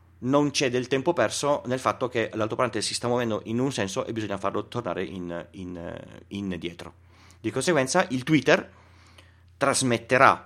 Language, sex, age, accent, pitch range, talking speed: Italian, male, 40-59, native, 90-130 Hz, 155 wpm